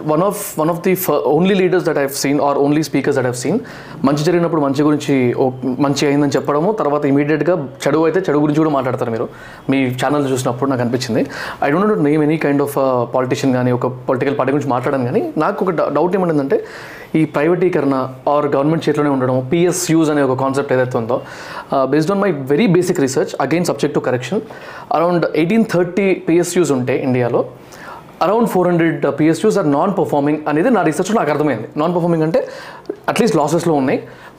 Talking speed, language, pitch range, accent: 200 wpm, Telugu, 135-170 Hz, native